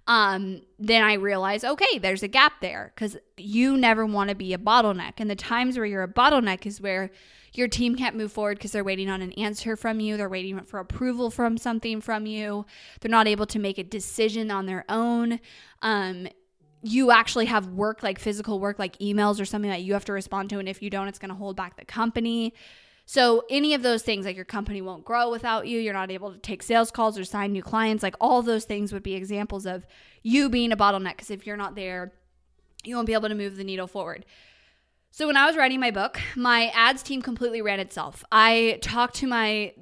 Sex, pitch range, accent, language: female, 195-230 Hz, American, English